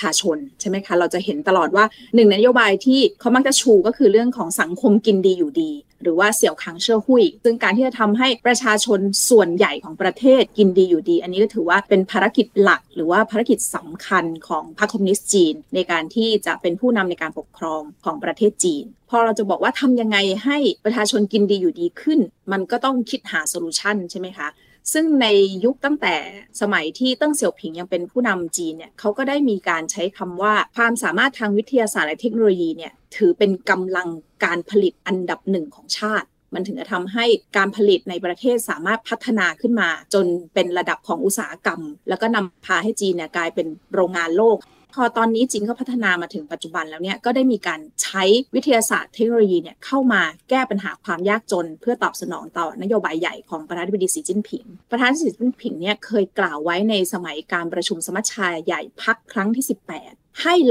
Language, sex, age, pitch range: Thai, female, 20-39, 180-235 Hz